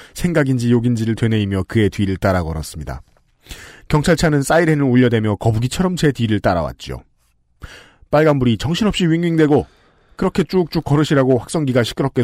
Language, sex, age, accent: Korean, male, 40-59, native